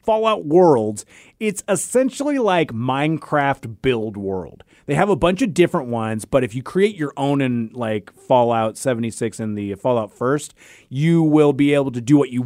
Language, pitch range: English, 125-170 Hz